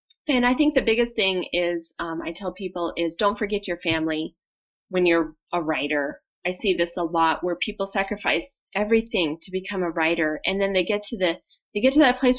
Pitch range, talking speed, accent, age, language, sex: 175-235 Hz, 215 wpm, American, 30-49, English, female